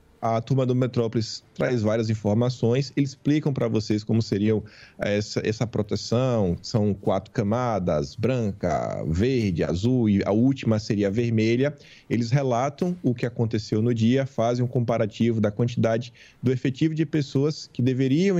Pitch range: 115-155 Hz